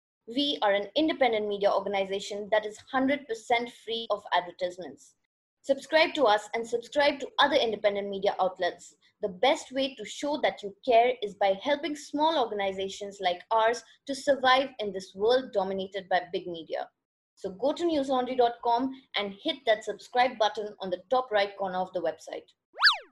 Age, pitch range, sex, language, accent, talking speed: 20-39, 200-275 Hz, female, English, Indian, 165 wpm